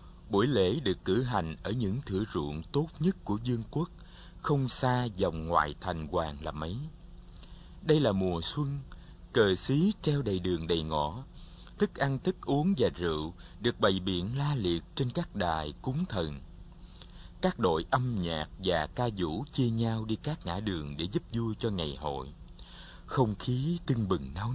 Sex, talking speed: male, 180 wpm